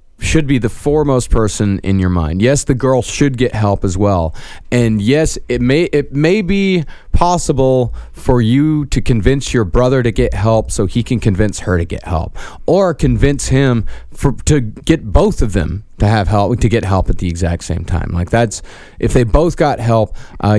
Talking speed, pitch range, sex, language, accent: 200 wpm, 90-120 Hz, male, English, American